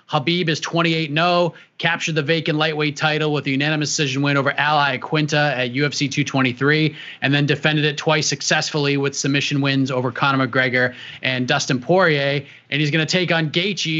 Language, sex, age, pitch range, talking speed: English, male, 30-49, 140-175 Hz, 175 wpm